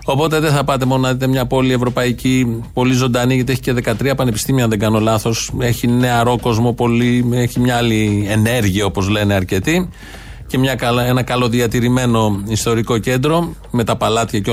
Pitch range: 120-145 Hz